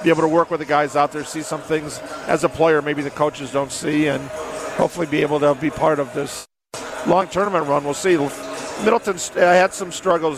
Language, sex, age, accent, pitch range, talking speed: English, male, 50-69, American, 145-165 Hz, 220 wpm